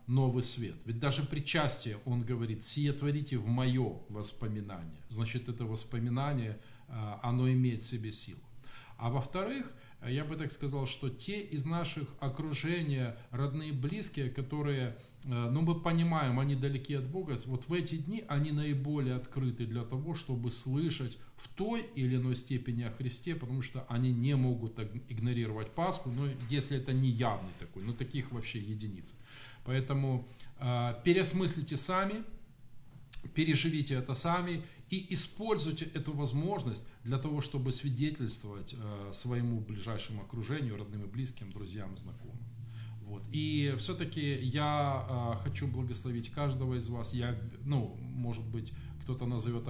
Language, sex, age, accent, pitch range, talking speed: Ukrainian, male, 40-59, native, 120-145 Hz, 140 wpm